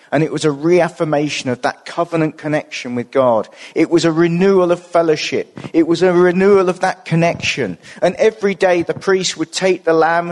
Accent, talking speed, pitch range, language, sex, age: British, 190 wpm, 140-175 Hz, English, male, 40-59